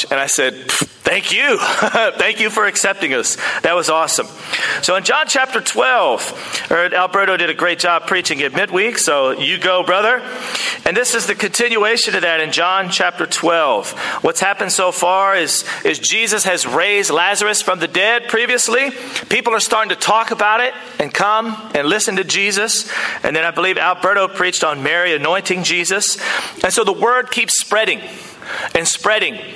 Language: English